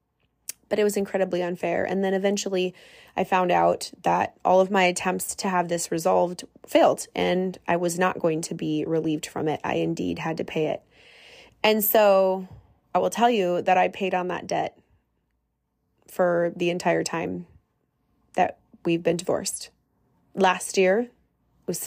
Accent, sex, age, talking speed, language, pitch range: American, female, 20-39, 165 wpm, English, 175-235 Hz